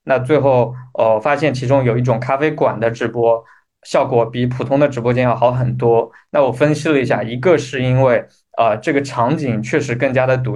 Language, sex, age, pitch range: Chinese, male, 20-39, 120-140 Hz